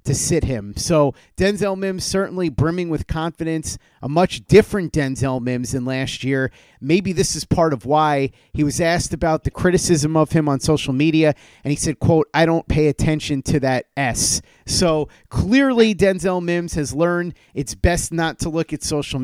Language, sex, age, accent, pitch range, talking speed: English, male, 30-49, American, 135-170 Hz, 185 wpm